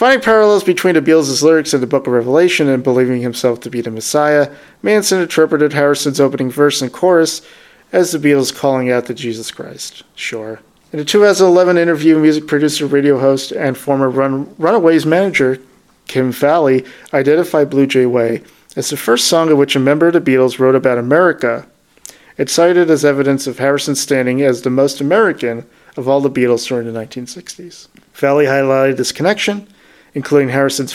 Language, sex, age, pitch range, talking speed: English, male, 40-59, 130-155 Hz, 175 wpm